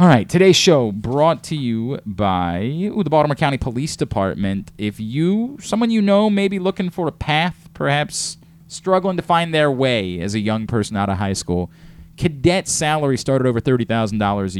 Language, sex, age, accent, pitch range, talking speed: English, male, 30-49, American, 110-155 Hz, 180 wpm